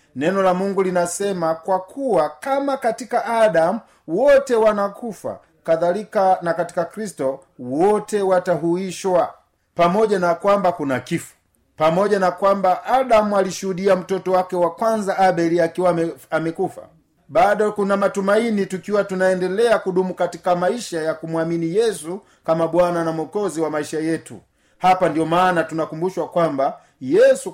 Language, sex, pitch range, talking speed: Swahili, male, 165-205 Hz, 125 wpm